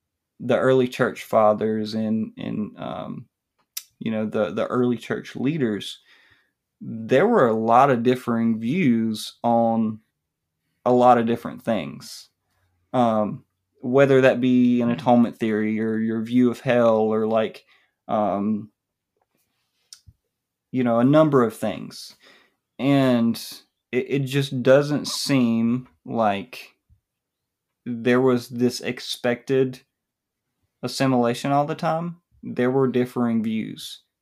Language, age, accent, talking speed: English, 20-39, American, 120 wpm